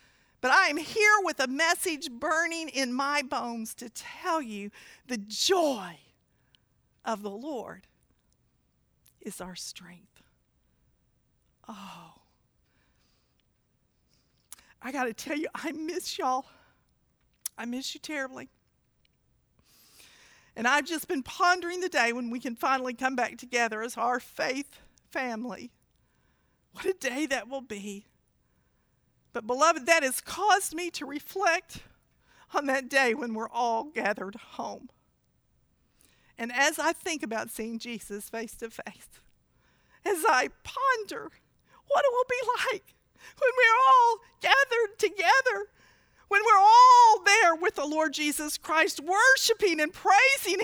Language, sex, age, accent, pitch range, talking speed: English, female, 50-69, American, 245-380 Hz, 130 wpm